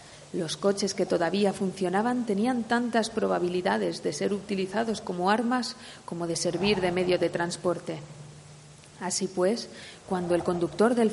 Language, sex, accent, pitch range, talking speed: Spanish, female, Spanish, 165-200 Hz, 140 wpm